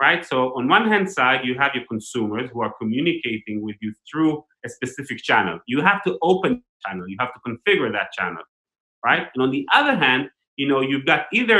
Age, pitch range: 30-49, 125-165 Hz